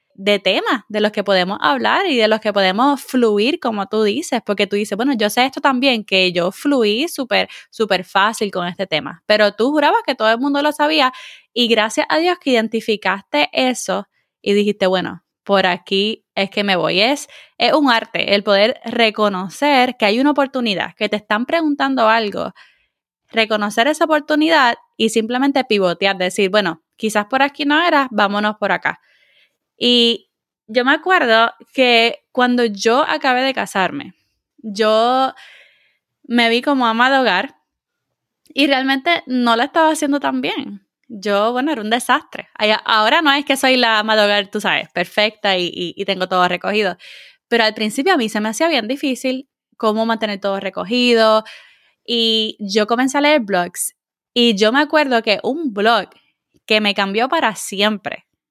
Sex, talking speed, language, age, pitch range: female, 175 wpm, Spanish, 20-39, 205-270 Hz